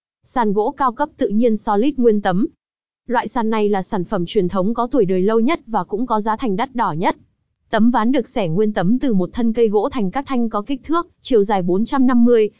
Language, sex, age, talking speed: Vietnamese, female, 20-39, 240 wpm